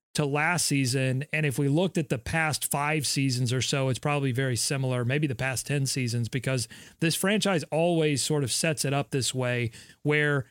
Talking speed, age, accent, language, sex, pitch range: 200 wpm, 30-49, American, English, male, 135-155 Hz